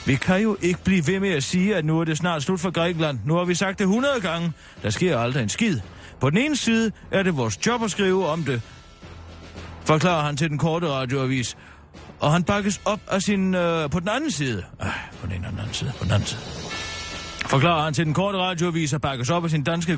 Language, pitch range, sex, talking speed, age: Danish, 115-180 Hz, male, 240 wpm, 30-49